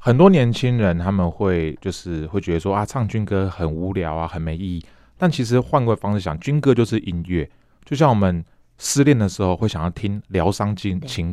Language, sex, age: Chinese, male, 30-49